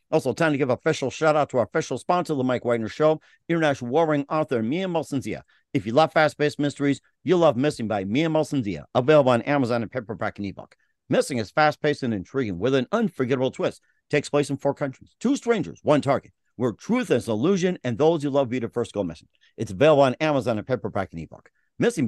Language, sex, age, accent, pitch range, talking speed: English, male, 50-69, American, 125-155 Hz, 215 wpm